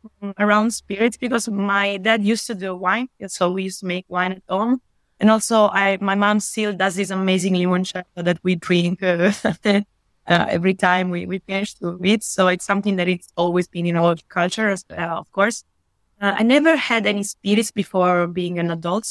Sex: female